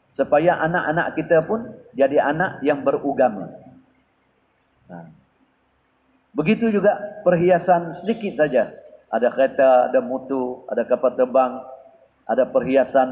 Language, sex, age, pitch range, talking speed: Malay, male, 50-69, 130-170 Hz, 105 wpm